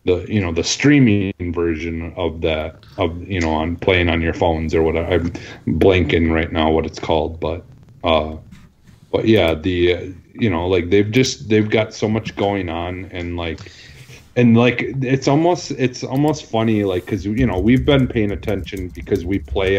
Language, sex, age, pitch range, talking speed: English, male, 30-49, 85-110 Hz, 190 wpm